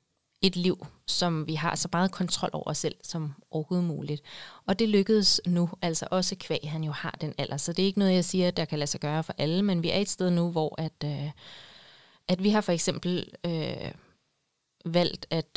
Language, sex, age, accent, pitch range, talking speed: Danish, female, 30-49, native, 155-180 Hz, 210 wpm